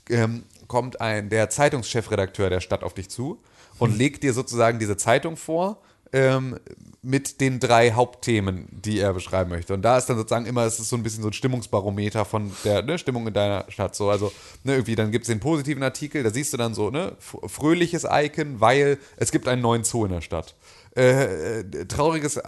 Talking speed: 200 wpm